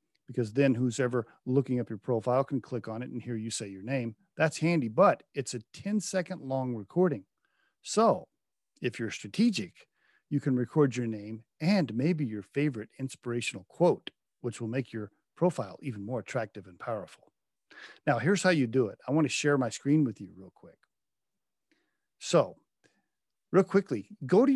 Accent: American